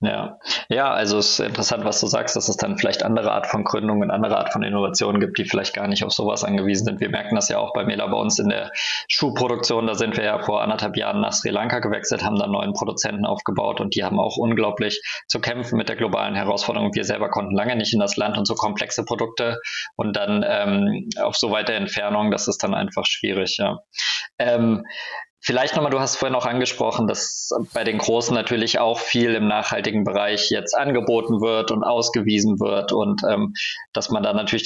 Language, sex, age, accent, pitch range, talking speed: German, male, 20-39, German, 105-120 Hz, 215 wpm